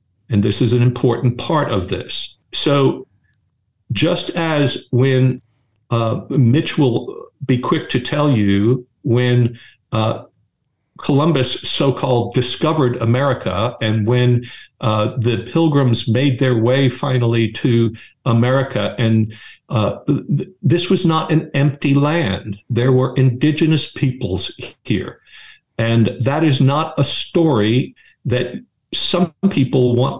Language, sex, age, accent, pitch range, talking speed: English, male, 60-79, American, 115-140 Hz, 120 wpm